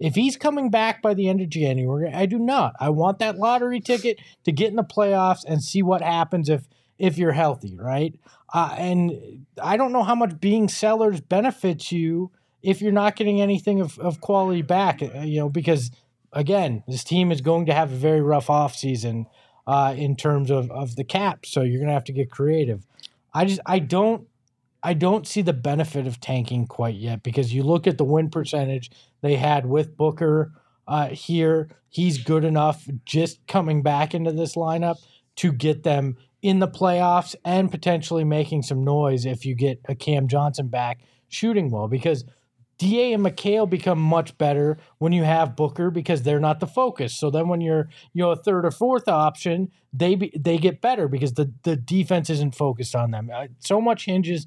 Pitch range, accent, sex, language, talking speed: 140-185 Hz, American, male, English, 200 wpm